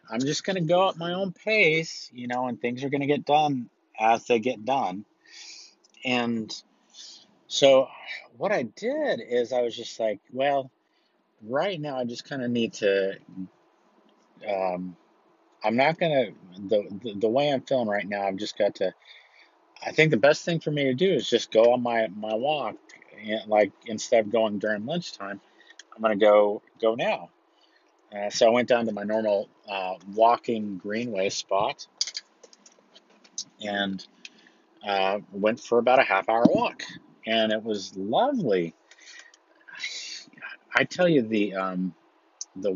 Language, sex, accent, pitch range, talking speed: English, male, American, 100-130 Hz, 165 wpm